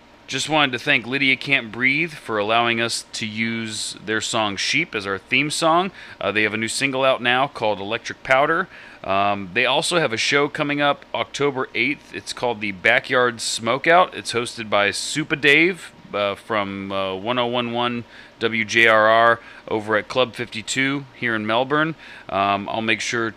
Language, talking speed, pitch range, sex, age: English, 170 wpm, 110-150 Hz, male, 30-49